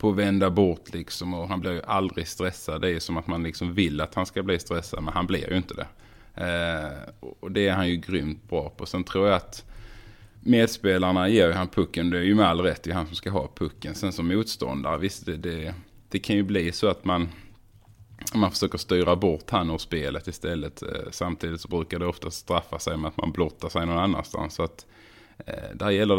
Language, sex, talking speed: Swedish, male, 225 wpm